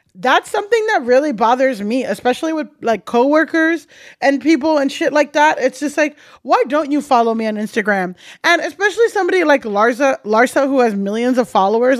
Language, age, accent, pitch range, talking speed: English, 20-39, American, 225-290 Hz, 185 wpm